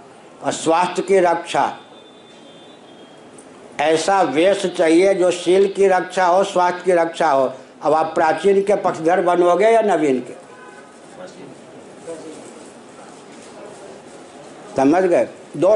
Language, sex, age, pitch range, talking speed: Hindi, male, 60-79, 175-200 Hz, 105 wpm